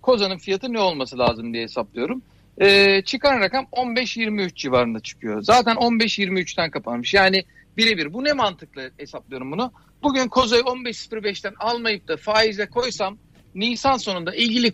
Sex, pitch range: male, 180-250 Hz